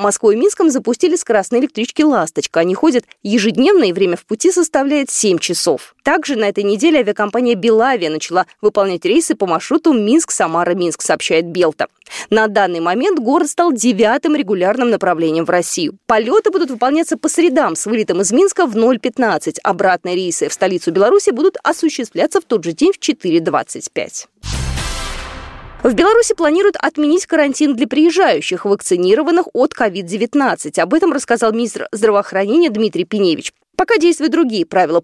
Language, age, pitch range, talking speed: Russian, 20-39, 200-320 Hz, 145 wpm